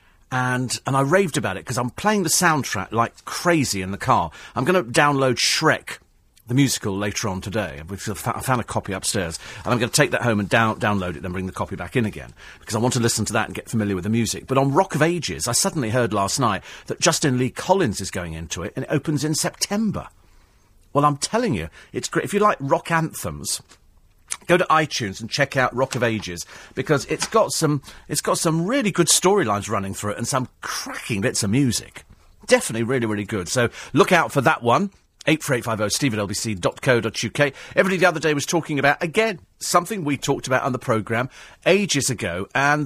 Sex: male